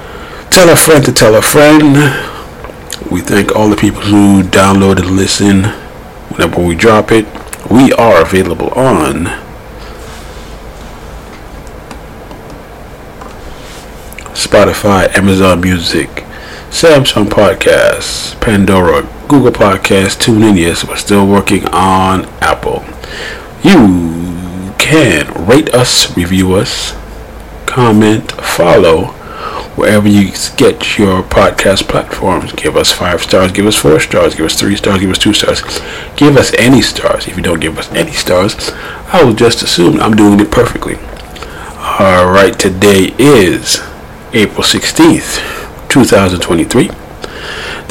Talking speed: 120 wpm